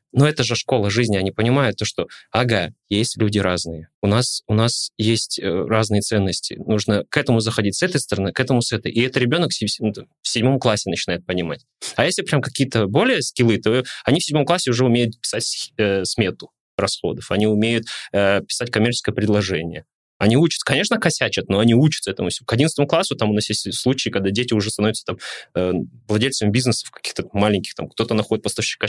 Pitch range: 105-130 Hz